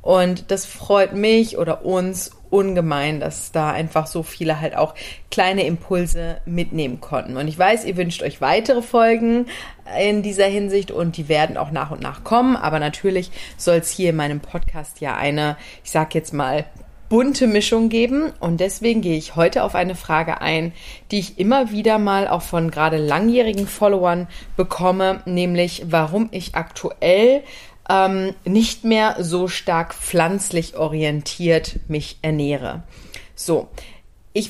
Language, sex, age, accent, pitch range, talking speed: German, female, 30-49, German, 160-195 Hz, 155 wpm